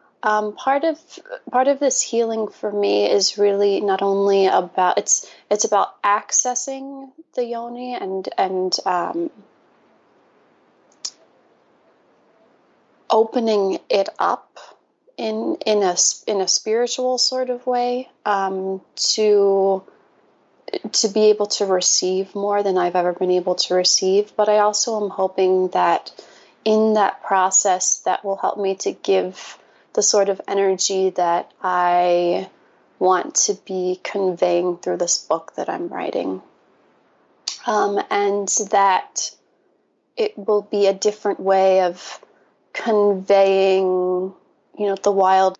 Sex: female